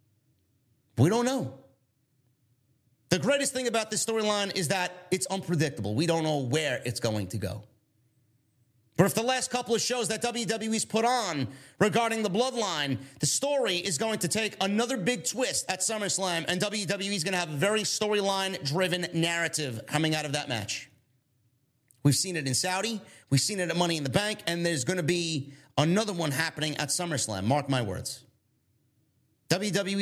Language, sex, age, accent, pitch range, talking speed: English, male, 30-49, American, 130-205 Hz, 175 wpm